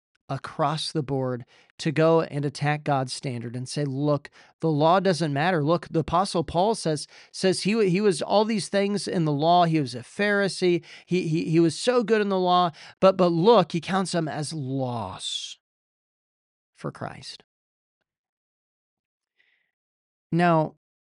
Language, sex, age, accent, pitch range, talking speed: English, male, 40-59, American, 140-185 Hz, 155 wpm